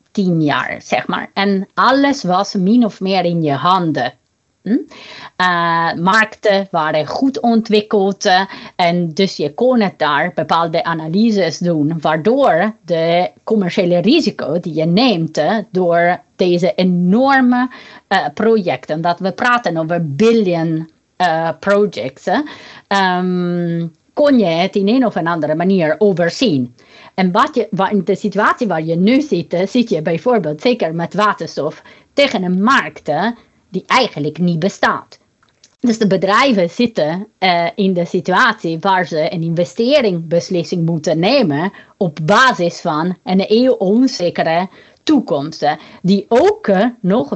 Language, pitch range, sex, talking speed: Dutch, 170-220 Hz, female, 135 wpm